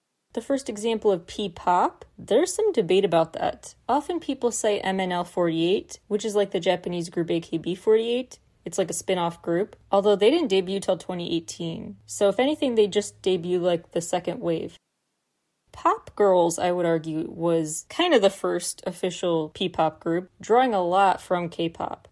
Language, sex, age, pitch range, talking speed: English, female, 20-39, 170-215 Hz, 165 wpm